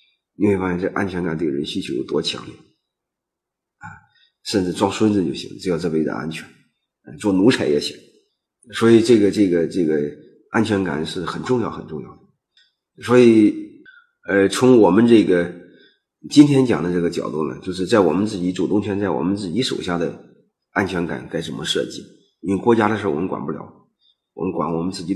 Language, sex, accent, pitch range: Chinese, male, native, 95-135 Hz